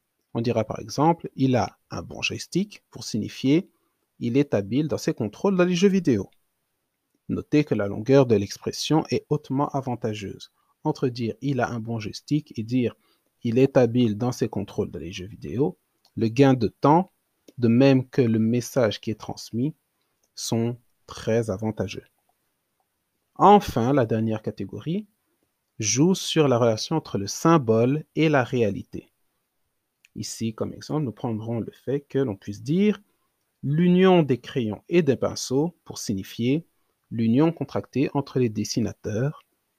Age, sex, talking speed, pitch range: 40-59, male, 155 wpm, 110-155 Hz